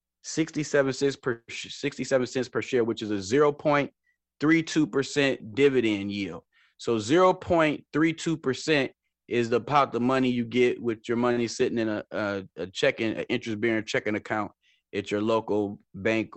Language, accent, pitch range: English, American, 105-135 Hz